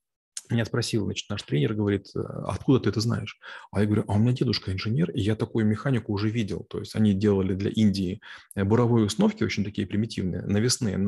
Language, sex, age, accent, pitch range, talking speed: Russian, male, 30-49, native, 105-120 Hz, 195 wpm